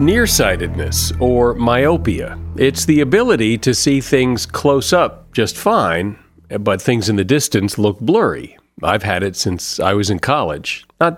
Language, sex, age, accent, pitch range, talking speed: English, male, 50-69, American, 110-145 Hz, 155 wpm